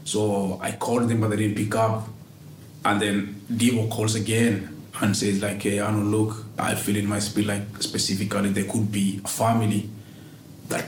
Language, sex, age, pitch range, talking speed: English, male, 30-49, 100-115 Hz, 180 wpm